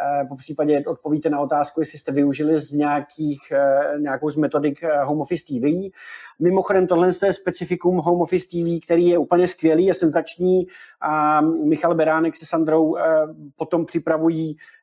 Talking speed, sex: 140 wpm, male